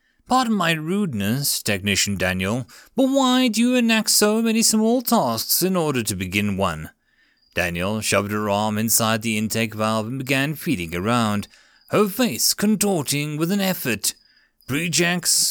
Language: English